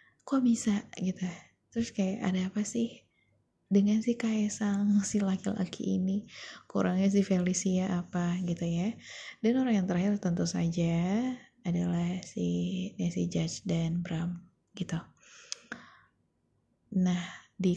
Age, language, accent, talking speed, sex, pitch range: 20-39, Indonesian, native, 125 wpm, female, 170-200 Hz